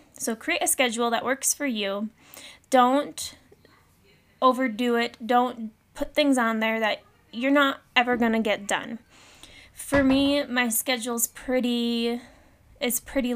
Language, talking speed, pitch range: English, 135 wpm, 220-260 Hz